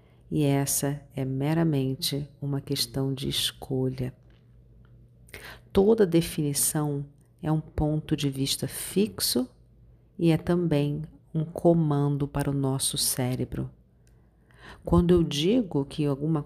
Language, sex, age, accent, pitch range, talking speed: Portuguese, female, 50-69, Brazilian, 140-160 Hz, 110 wpm